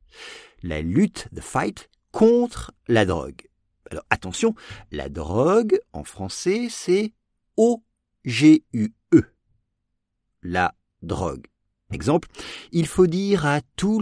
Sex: male